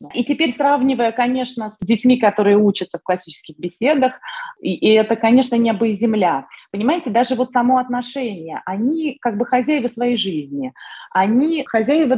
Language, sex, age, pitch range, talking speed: Russian, female, 30-49, 205-270 Hz, 155 wpm